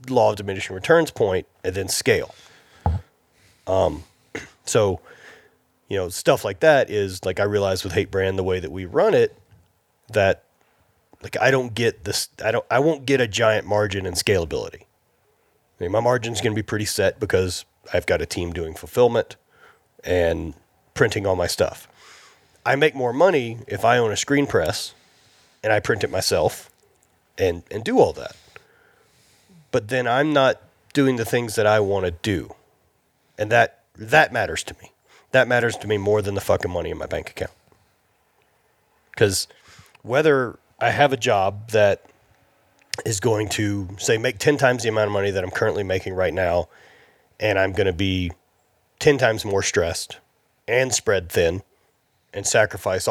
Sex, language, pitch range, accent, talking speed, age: male, English, 95-125 Hz, American, 175 wpm, 30-49